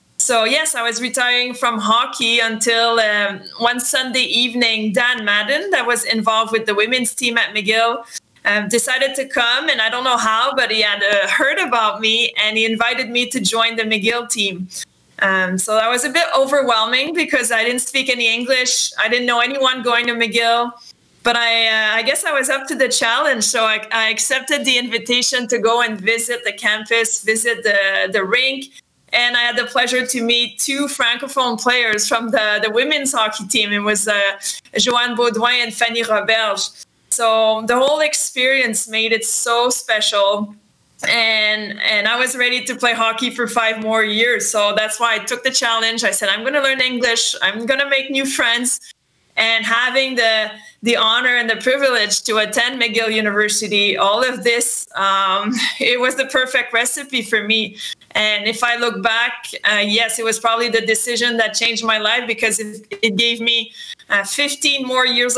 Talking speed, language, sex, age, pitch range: 185 wpm, English, female, 20-39, 220-250 Hz